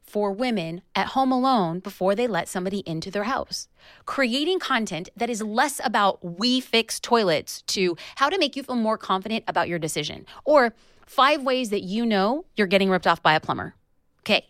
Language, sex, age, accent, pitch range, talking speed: English, female, 30-49, American, 180-245 Hz, 190 wpm